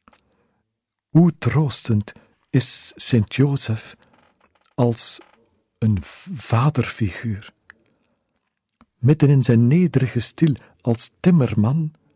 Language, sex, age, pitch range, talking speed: Dutch, male, 50-69, 115-150 Hz, 75 wpm